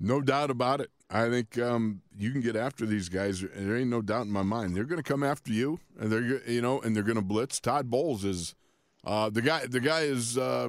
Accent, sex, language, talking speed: American, male, English, 255 wpm